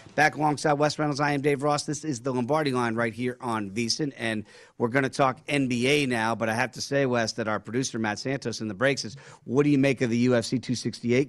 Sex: male